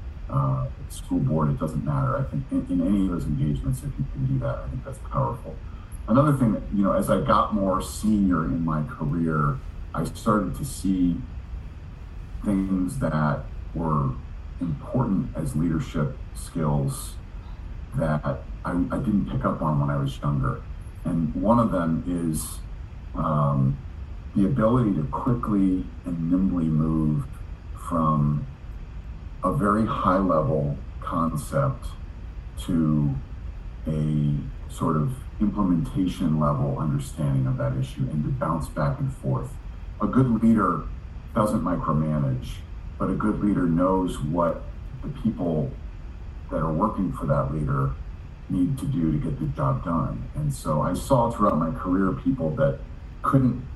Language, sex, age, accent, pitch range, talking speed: English, male, 40-59, American, 75-95 Hz, 140 wpm